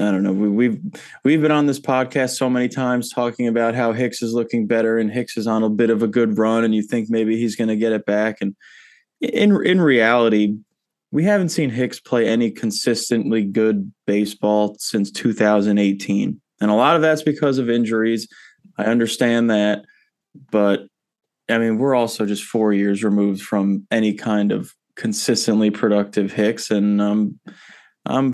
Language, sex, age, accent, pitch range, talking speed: English, male, 20-39, American, 105-125 Hz, 180 wpm